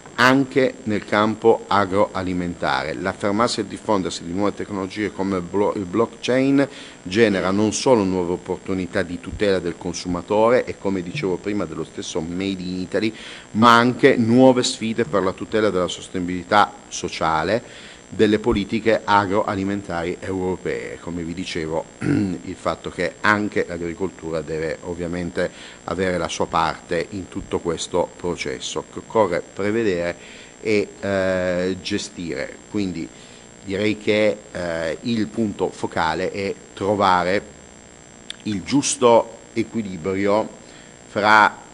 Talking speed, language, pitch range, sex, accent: 120 wpm, Italian, 85-105 Hz, male, native